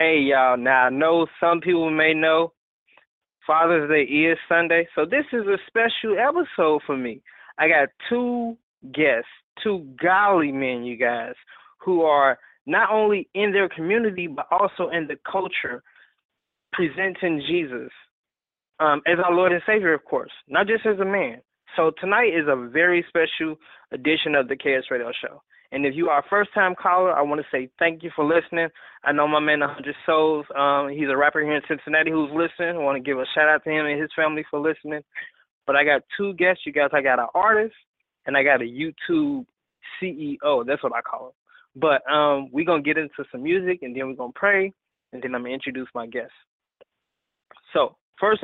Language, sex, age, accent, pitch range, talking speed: English, male, 20-39, American, 145-185 Hz, 195 wpm